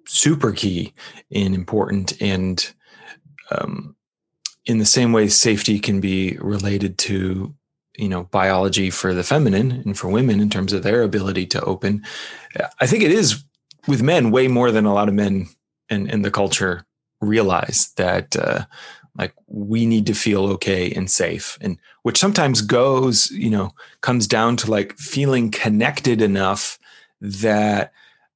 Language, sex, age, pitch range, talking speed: English, male, 30-49, 100-125 Hz, 155 wpm